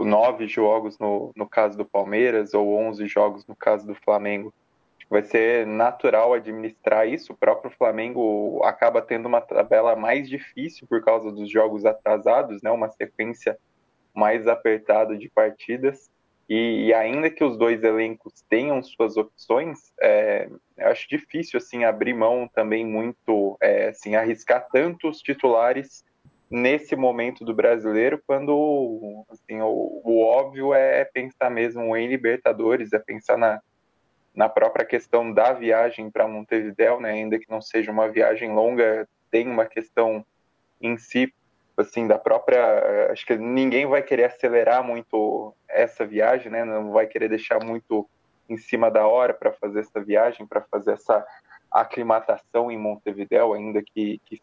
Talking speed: 150 wpm